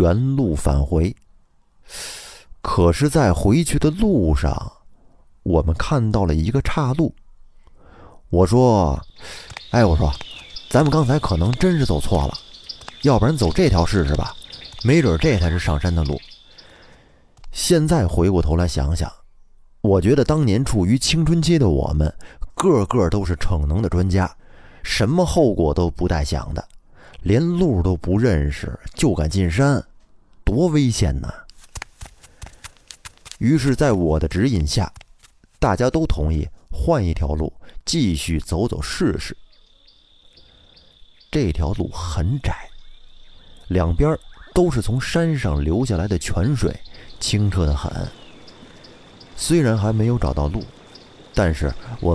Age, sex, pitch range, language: 30-49, male, 80-125 Hz, Chinese